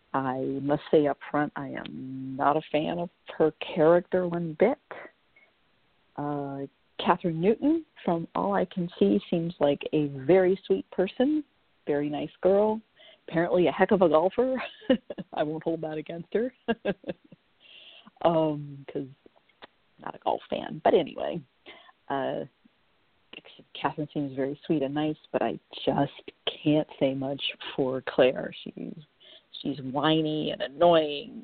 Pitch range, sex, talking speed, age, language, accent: 145-210 Hz, female, 135 wpm, 50-69, English, American